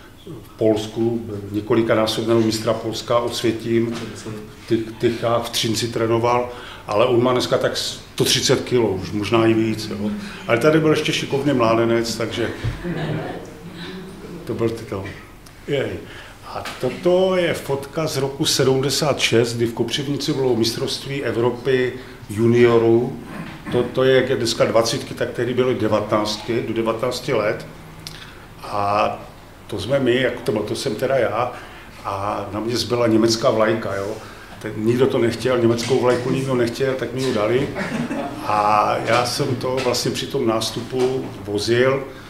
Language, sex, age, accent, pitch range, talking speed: Czech, male, 40-59, native, 110-125 Hz, 140 wpm